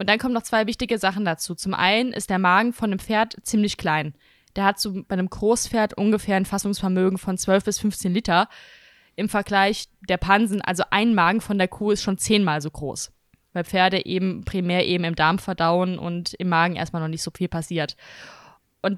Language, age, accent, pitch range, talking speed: German, 20-39, German, 185-225 Hz, 205 wpm